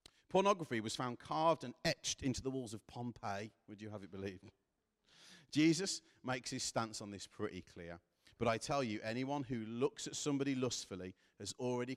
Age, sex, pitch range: 40-59, male, 100-130 Hz